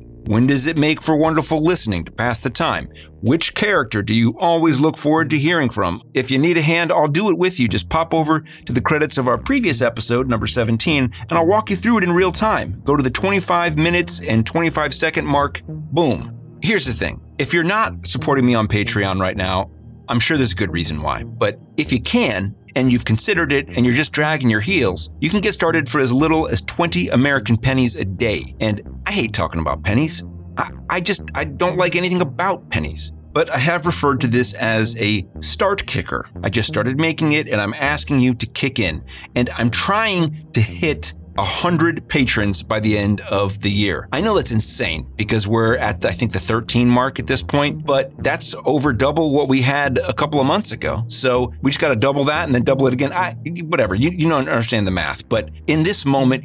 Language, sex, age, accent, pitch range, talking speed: English, male, 30-49, American, 105-155 Hz, 225 wpm